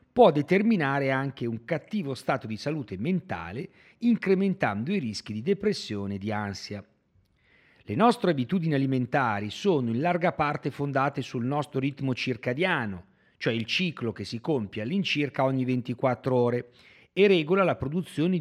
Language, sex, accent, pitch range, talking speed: Italian, male, native, 110-165 Hz, 145 wpm